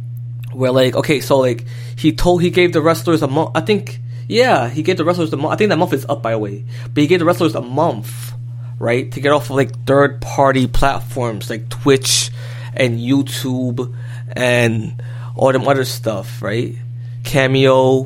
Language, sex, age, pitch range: English, male, 20-39, 120-135 Hz